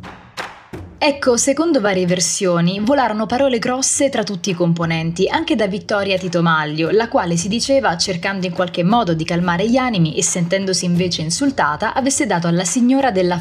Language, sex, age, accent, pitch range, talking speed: Italian, female, 20-39, native, 170-230 Hz, 165 wpm